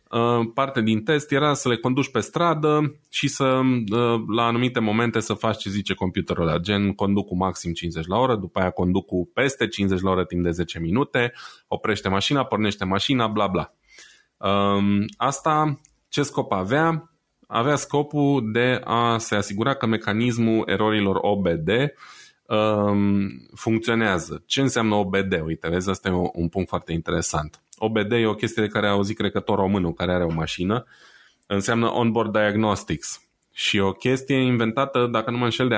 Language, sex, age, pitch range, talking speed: Romanian, male, 20-39, 95-120 Hz, 160 wpm